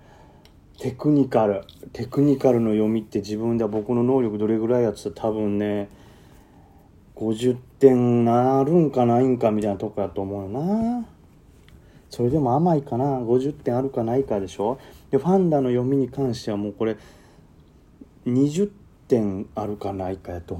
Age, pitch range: 30-49, 100-140 Hz